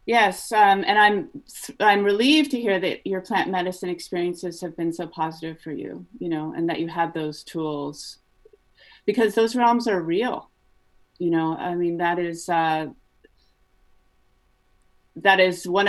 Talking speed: 160 wpm